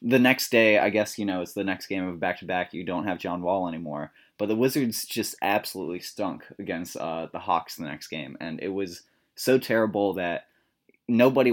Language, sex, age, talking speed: English, male, 20-39, 210 wpm